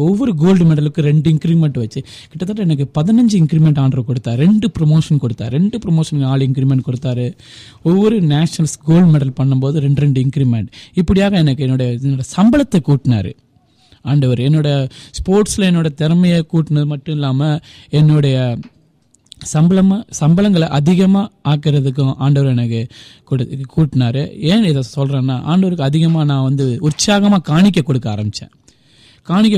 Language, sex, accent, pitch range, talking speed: Tamil, male, native, 130-175 Hz, 45 wpm